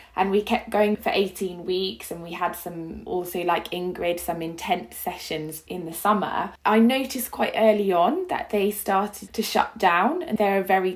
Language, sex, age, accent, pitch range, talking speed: English, female, 20-39, British, 175-220 Hz, 190 wpm